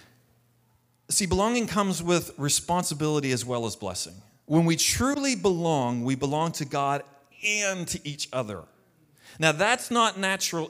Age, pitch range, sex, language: 40-59, 120-160 Hz, male, English